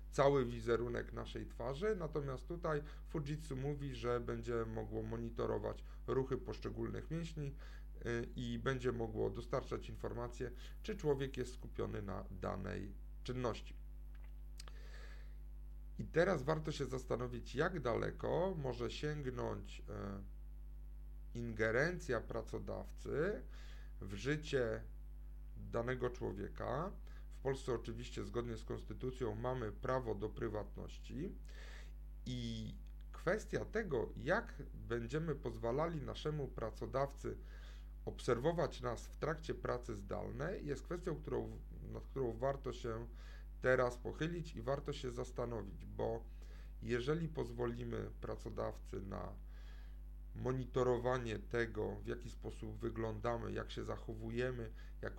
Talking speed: 100 wpm